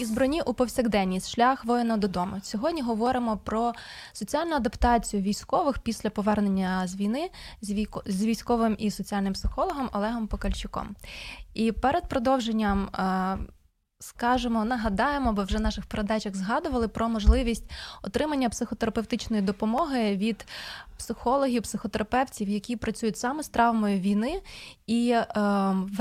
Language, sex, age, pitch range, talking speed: Ukrainian, female, 20-39, 205-245 Hz, 115 wpm